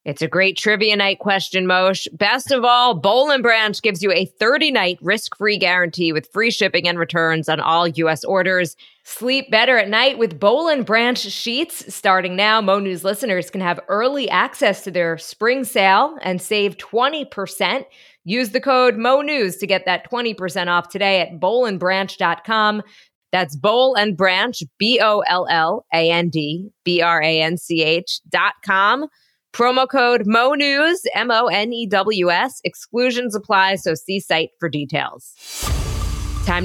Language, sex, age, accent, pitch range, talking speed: English, female, 20-39, American, 175-225 Hz, 140 wpm